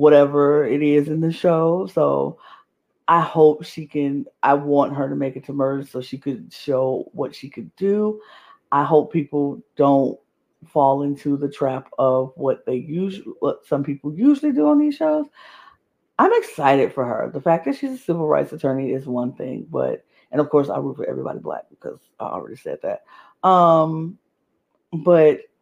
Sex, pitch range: female, 140-175 Hz